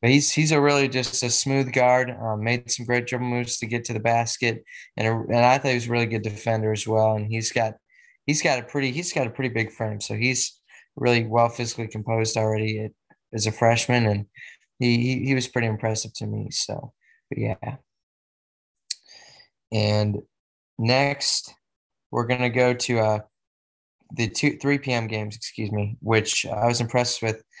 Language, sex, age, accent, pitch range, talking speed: English, male, 20-39, American, 110-125 Hz, 190 wpm